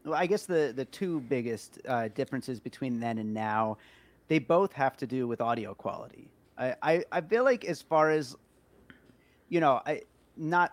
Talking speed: 185 wpm